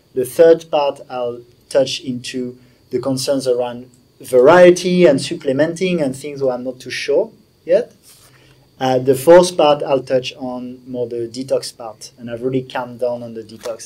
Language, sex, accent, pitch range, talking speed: English, male, French, 130-165 Hz, 170 wpm